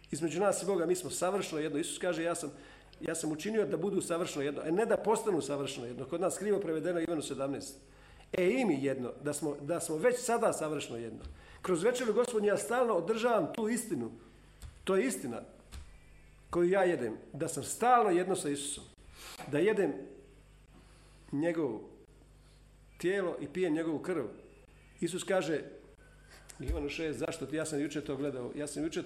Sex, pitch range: male, 140-190 Hz